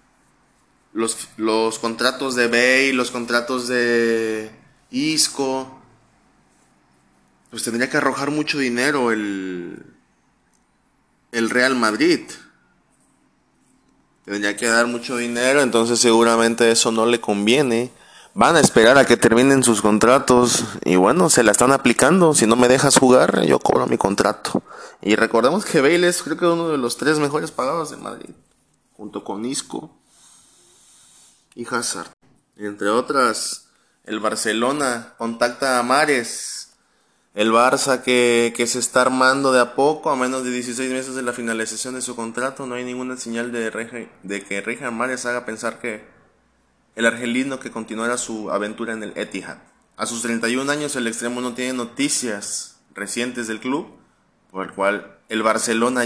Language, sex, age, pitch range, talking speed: Spanish, male, 20-39, 115-130 Hz, 150 wpm